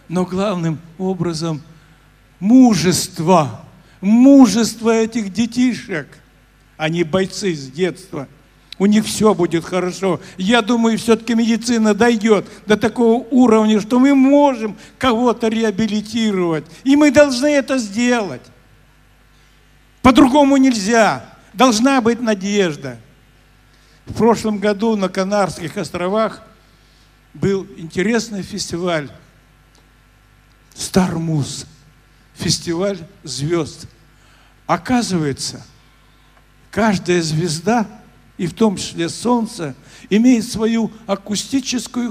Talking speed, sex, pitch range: 90 wpm, male, 160-230 Hz